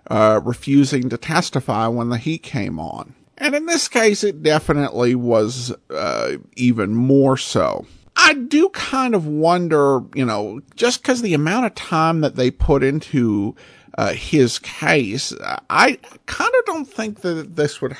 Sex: male